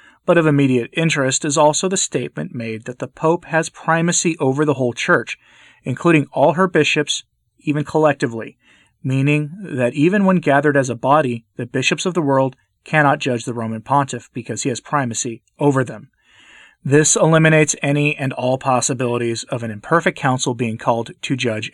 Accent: American